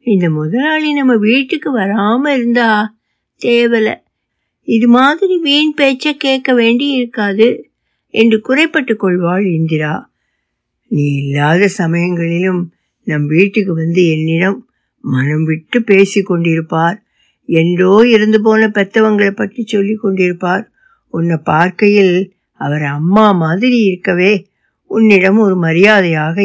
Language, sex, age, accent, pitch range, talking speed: Tamil, female, 60-79, native, 175-250 Hz, 100 wpm